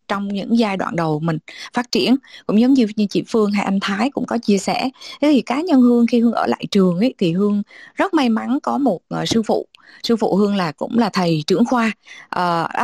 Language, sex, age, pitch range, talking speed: Vietnamese, female, 20-39, 185-250 Hz, 245 wpm